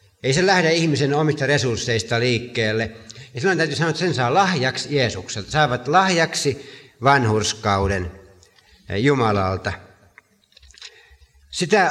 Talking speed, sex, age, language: 105 wpm, male, 60-79, Finnish